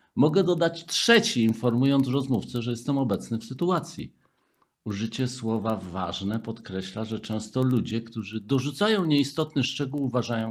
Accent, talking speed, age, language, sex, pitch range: native, 125 wpm, 50-69, Polish, male, 105-135 Hz